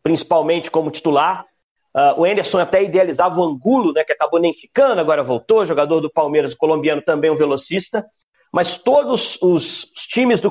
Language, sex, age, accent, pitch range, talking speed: Portuguese, male, 40-59, Brazilian, 160-200 Hz, 185 wpm